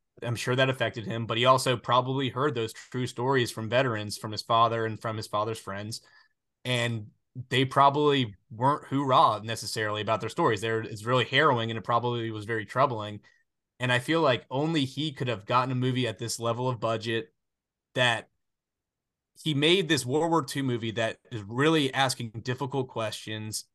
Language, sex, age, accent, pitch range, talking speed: English, male, 20-39, American, 115-135 Hz, 180 wpm